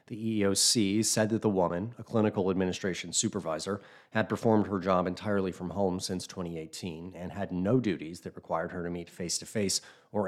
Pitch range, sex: 90-110 Hz, male